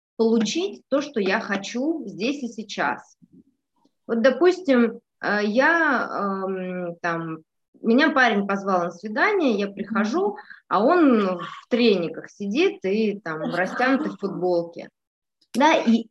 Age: 20-39